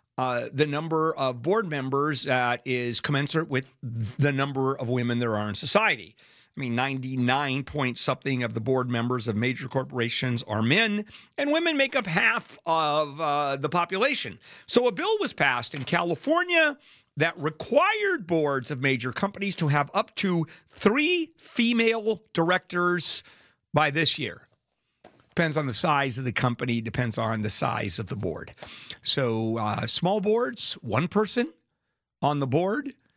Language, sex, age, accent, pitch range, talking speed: English, male, 50-69, American, 130-195 Hz, 155 wpm